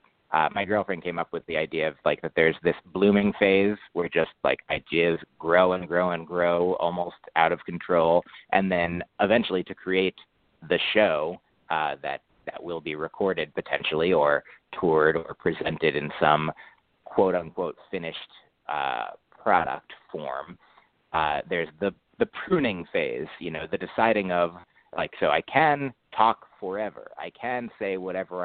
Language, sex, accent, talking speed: English, male, American, 160 wpm